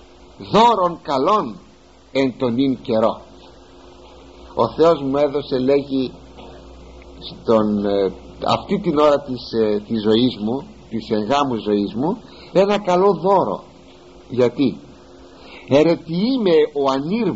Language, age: Greek, 60-79